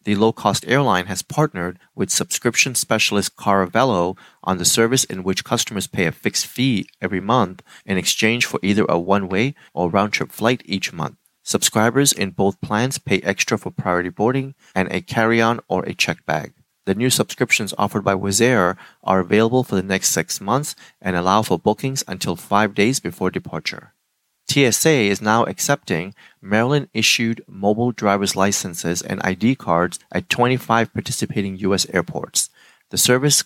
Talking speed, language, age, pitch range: 160 wpm, English, 30-49, 95-120 Hz